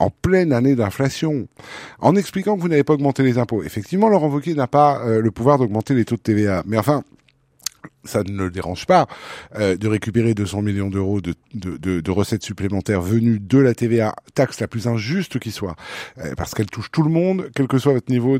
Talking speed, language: 220 wpm, French